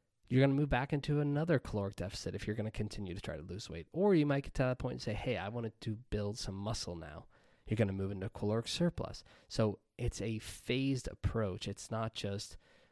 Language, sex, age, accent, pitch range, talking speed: English, male, 20-39, American, 100-120 Hz, 235 wpm